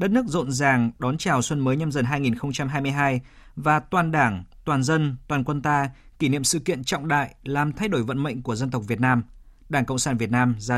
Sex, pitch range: male, 125-160 Hz